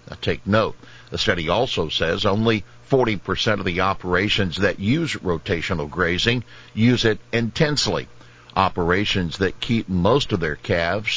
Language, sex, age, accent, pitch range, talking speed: English, male, 60-79, American, 90-115 Hz, 135 wpm